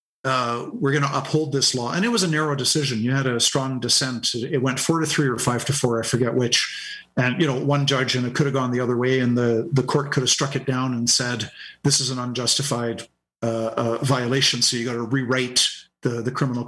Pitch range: 125-145 Hz